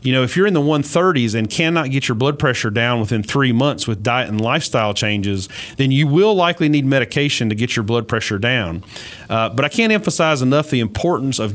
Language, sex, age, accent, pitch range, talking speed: English, male, 30-49, American, 115-140 Hz, 225 wpm